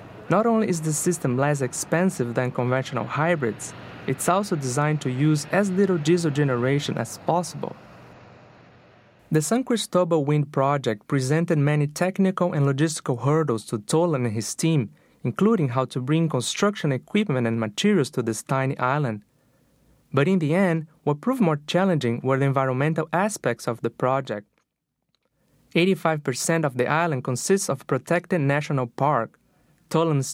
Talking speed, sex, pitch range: 145 wpm, male, 130-170 Hz